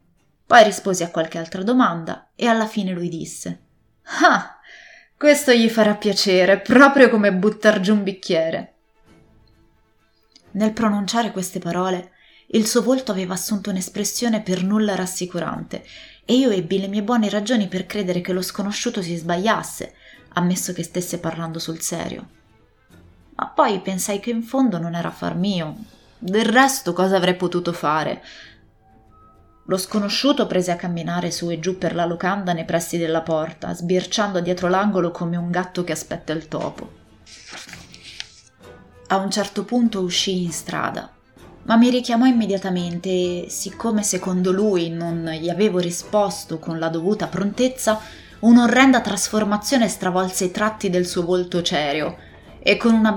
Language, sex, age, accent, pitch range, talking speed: Italian, female, 20-39, native, 175-215 Hz, 150 wpm